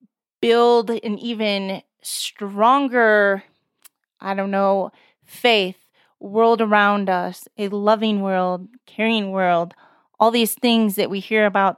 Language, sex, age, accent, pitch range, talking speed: English, female, 20-39, American, 200-230 Hz, 115 wpm